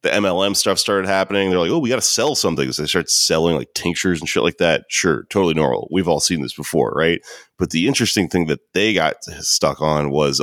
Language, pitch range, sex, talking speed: English, 75-100 Hz, male, 240 wpm